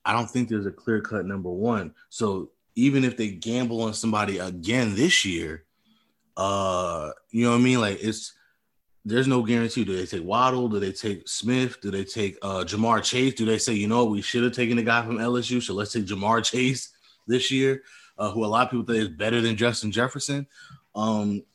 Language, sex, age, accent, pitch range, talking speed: English, male, 20-39, American, 100-120 Hz, 215 wpm